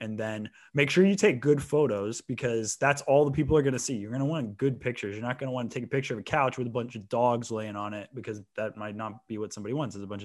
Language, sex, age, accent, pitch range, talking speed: English, male, 20-39, American, 110-150 Hz, 315 wpm